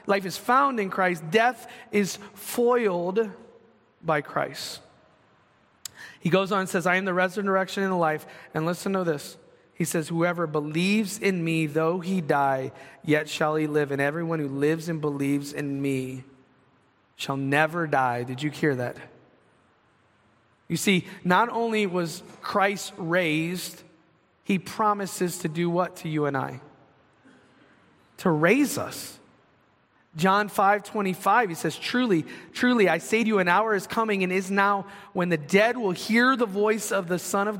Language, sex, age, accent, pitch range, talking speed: English, male, 30-49, American, 160-200 Hz, 160 wpm